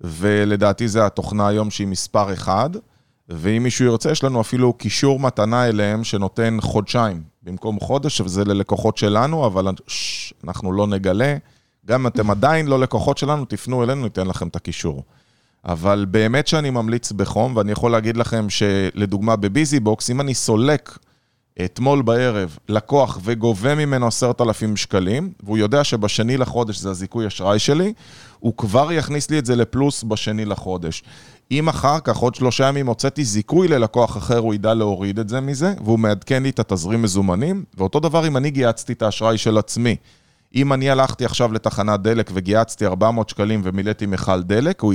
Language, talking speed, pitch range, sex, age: Hebrew, 165 wpm, 105-130 Hz, male, 20-39